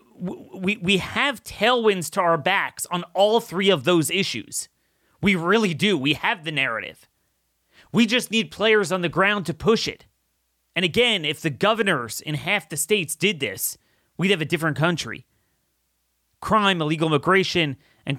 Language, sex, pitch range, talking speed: English, male, 140-220 Hz, 165 wpm